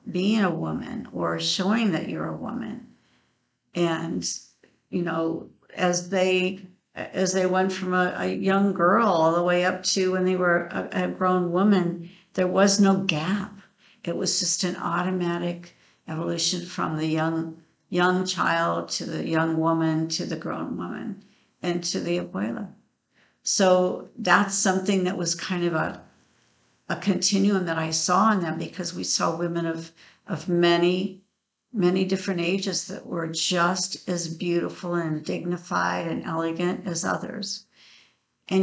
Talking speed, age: 150 wpm, 60-79